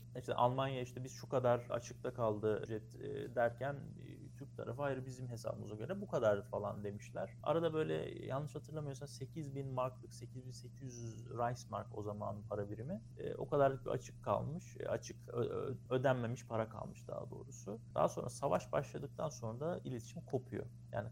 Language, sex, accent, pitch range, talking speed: Turkish, male, native, 115-135 Hz, 165 wpm